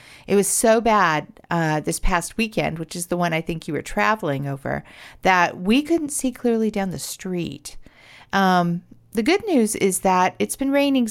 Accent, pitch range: American, 170-235 Hz